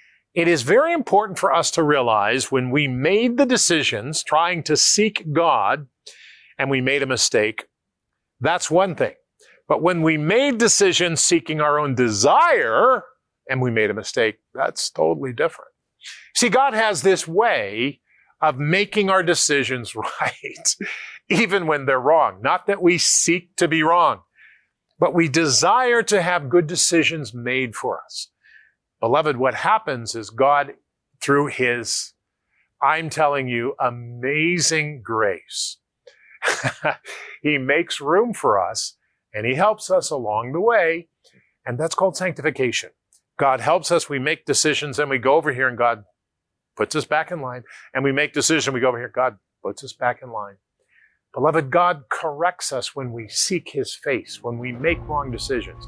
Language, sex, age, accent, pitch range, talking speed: English, male, 50-69, American, 130-175 Hz, 160 wpm